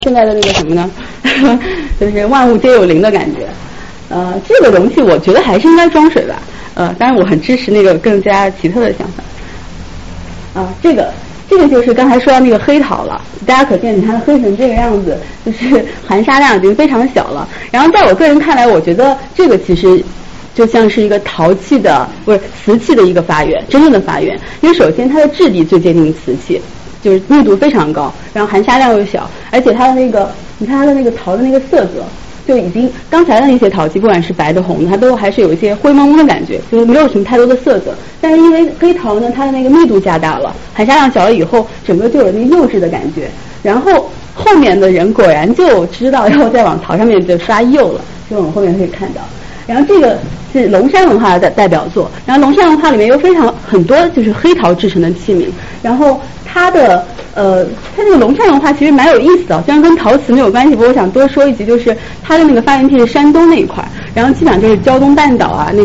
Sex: female